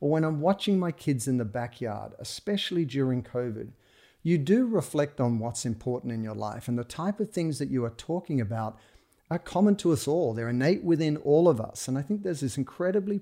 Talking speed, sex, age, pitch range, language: 220 wpm, male, 40-59, 120-160 Hz, English